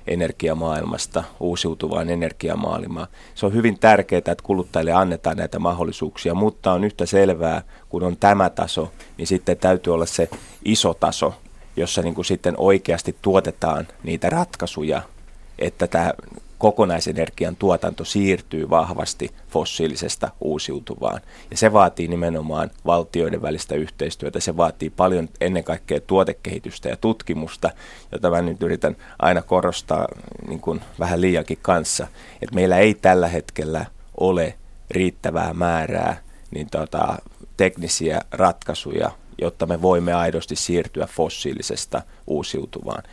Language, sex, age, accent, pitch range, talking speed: Finnish, male, 30-49, native, 80-95 Hz, 120 wpm